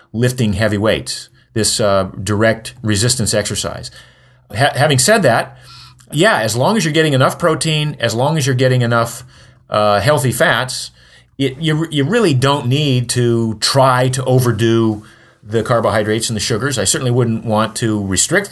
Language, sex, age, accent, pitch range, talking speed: English, male, 40-59, American, 110-140 Hz, 160 wpm